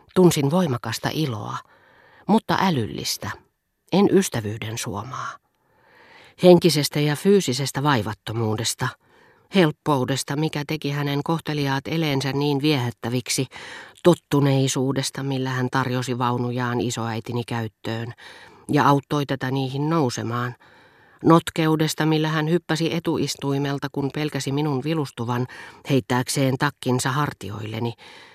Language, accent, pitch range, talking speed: Finnish, native, 120-155 Hz, 95 wpm